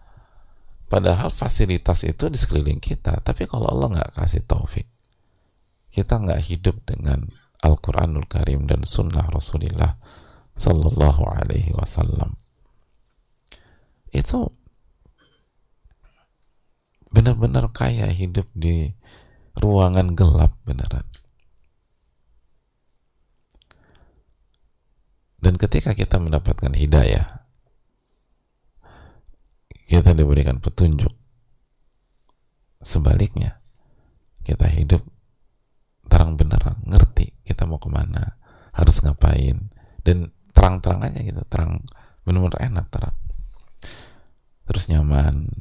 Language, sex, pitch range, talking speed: English, male, 80-105 Hz, 80 wpm